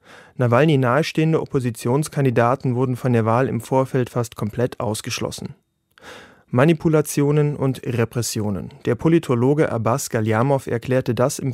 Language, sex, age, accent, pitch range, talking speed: German, male, 30-49, German, 120-140 Hz, 115 wpm